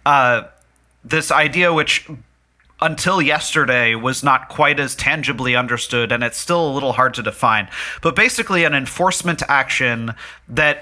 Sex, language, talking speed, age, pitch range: male, English, 145 wpm, 30-49, 125-160 Hz